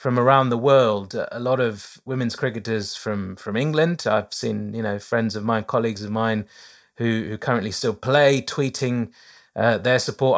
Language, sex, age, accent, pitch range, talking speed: English, male, 30-49, British, 110-135 Hz, 180 wpm